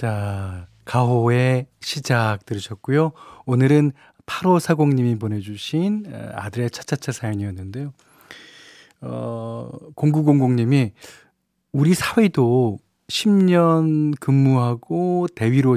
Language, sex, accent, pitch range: Korean, male, native, 105-145 Hz